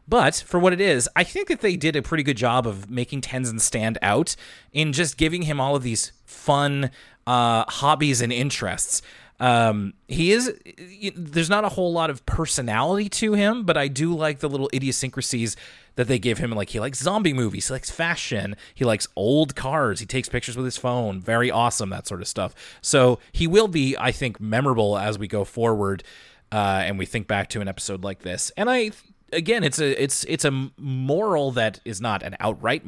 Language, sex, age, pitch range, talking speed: English, male, 30-49, 110-150 Hz, 205 wpm